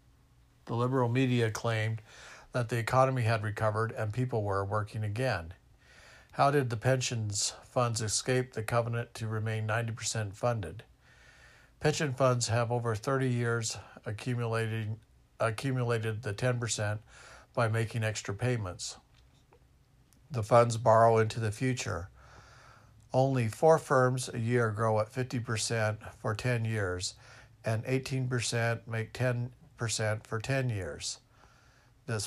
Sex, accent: male, American